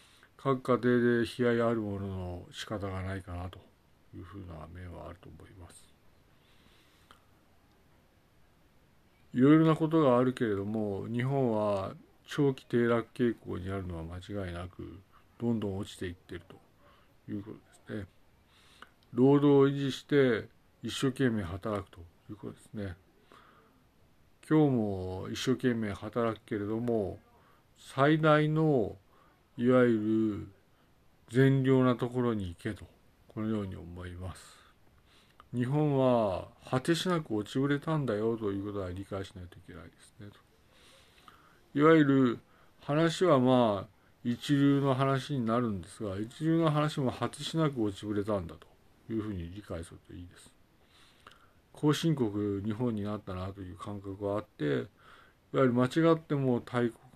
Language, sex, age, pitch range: Japanese, male, 50-69, 95-130 Hz